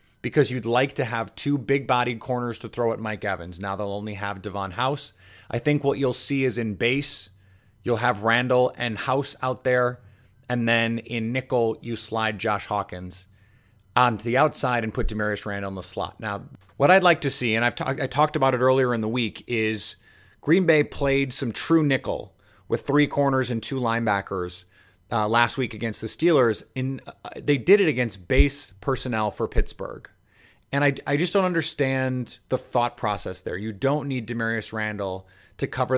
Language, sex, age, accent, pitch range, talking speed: English, male, 30-49, American, 110-135 Hz, 190 wpm